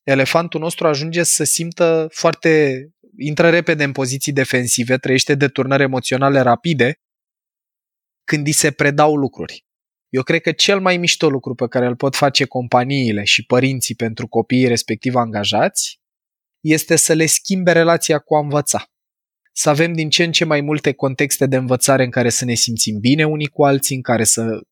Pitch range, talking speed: 125-155 Hz, 170 wpm